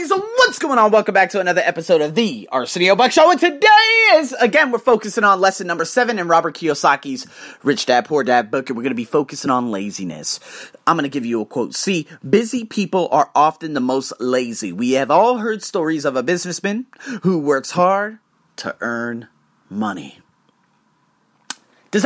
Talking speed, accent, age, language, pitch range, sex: 190 wpm, American, 30-49, English, 160-240 Hz, male